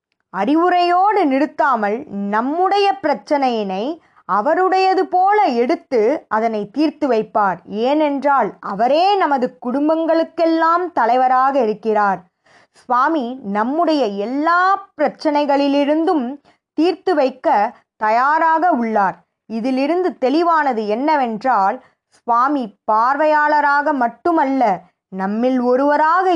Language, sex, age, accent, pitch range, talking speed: Tamil, female, 20-39, native, 230-325 Hz, 75 wpm